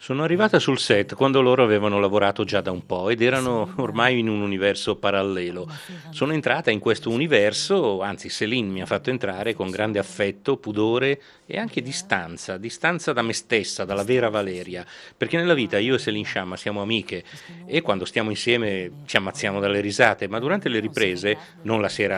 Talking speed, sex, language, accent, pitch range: 185 wpm, male, Italian, native, 105-155 Hz